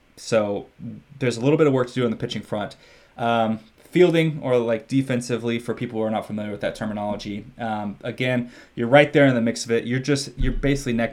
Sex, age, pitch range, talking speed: male, 20-39, 110-135 Hz, 225 wpm